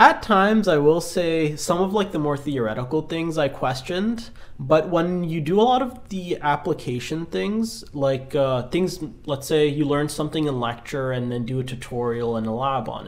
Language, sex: English, male